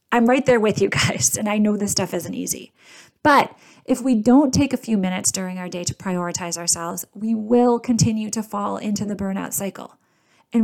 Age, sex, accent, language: 30-49, female, American, English